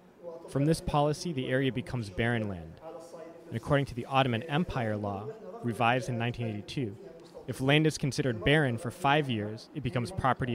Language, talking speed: English, 165 wpm